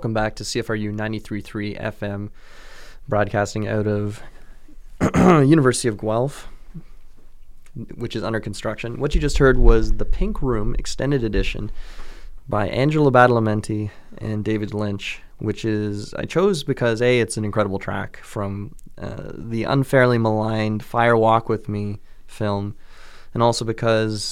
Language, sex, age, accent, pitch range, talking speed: English, male, 20-39, American, 105-120 Hz, 135 wpm